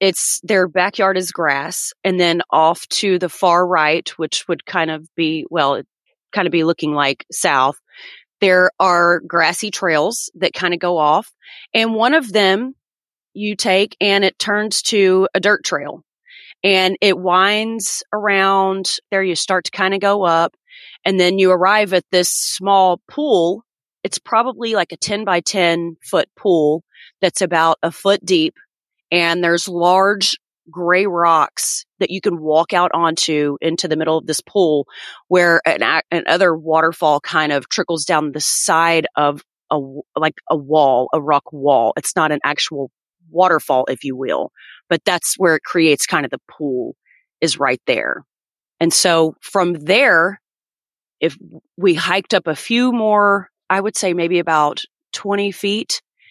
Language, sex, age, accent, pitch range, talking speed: English, female, 30-49, American, 160-200 Hz, 160 wpm